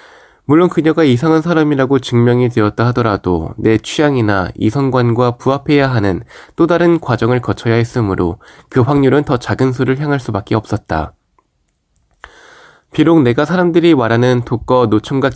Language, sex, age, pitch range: Korean, male, 20-39, 110-155 Hz